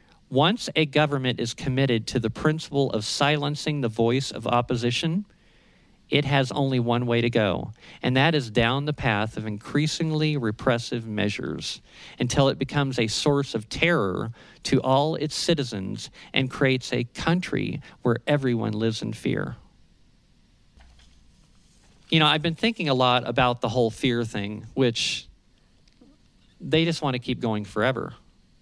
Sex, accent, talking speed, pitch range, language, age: male, American, 150 wpm, 110-140 Hz, English, 50-69